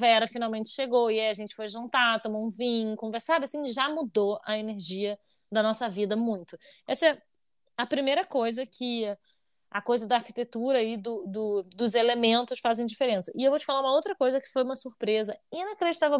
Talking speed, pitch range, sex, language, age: 190 wpm, 220-295 Hz, female, Portuguese, 20-39